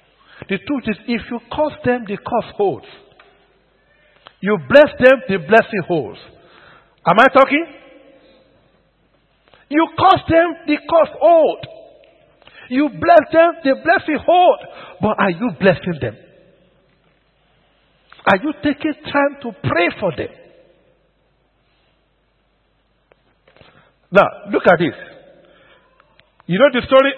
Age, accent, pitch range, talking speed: 50-69, Nigerian, 165-260 Hz, 115 wpm